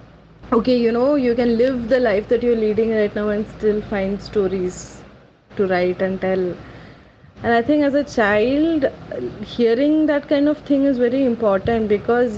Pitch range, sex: 190-235 Hz, female